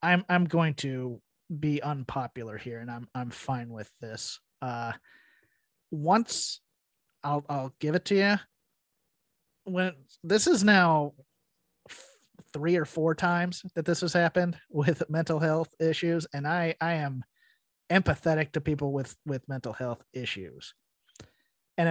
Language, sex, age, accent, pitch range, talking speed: English, male, 30-49, American, 155-210 Hz, 140 wpm